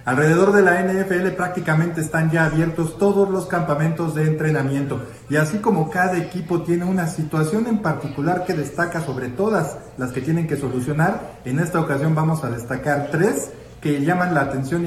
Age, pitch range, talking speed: 40-59, 140-180 Hz, 175 wpm